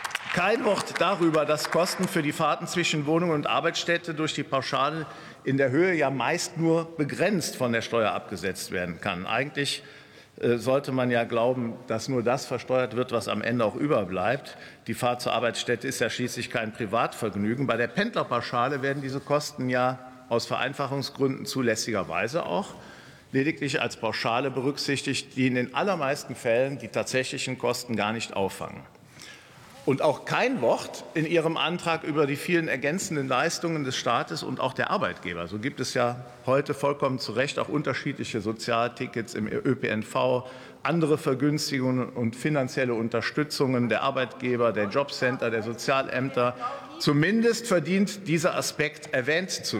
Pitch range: 120-155 Hz